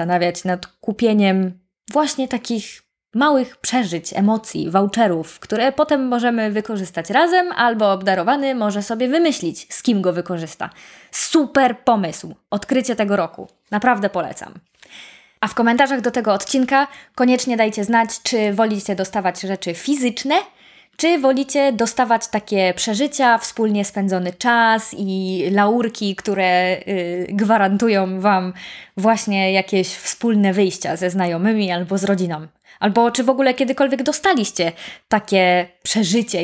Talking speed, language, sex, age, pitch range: 120 wpm, Polish, female, 20-39, 190-250 Hz